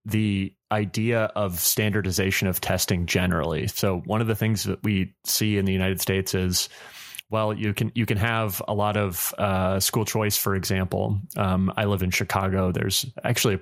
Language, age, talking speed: English, 30-49, 185 wpm